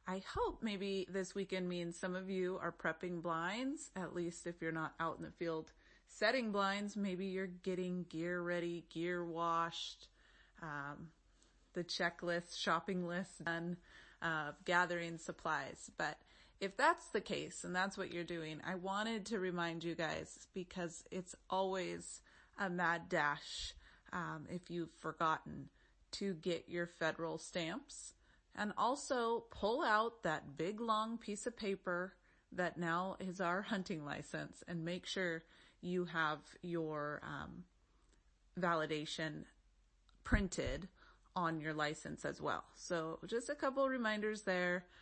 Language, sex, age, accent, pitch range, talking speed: English, female, 30-49, American, 165-195 Hz, 145 wpm